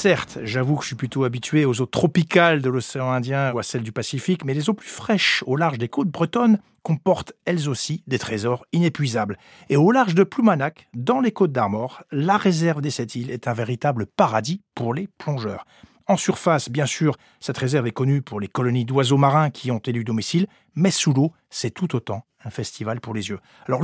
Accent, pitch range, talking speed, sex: French, 130-195 Hz, 210 wpm, male